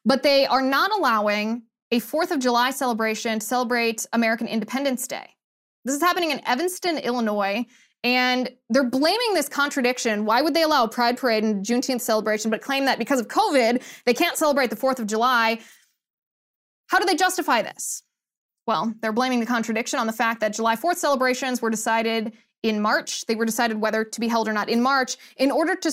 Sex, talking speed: female, 195 wpm